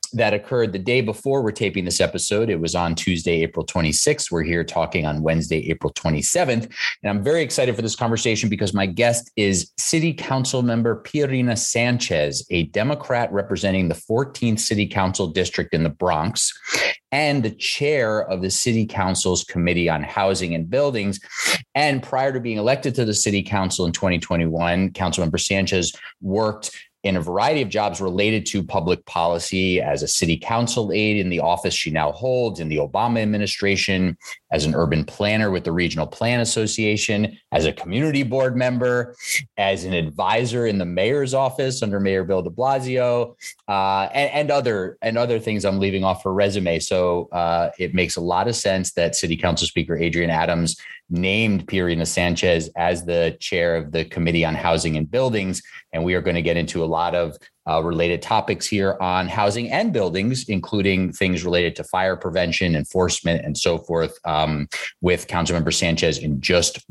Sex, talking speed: male, 180 wpm